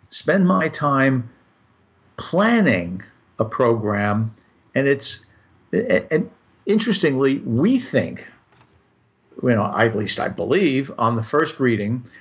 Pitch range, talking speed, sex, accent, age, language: 110-135 Hz, 120 wpm, male, American, 50-69, English